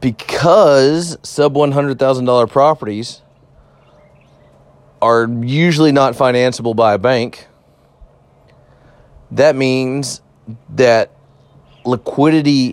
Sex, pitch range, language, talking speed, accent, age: male, 105-125 Hz, English, 65 wpm, American, 30-49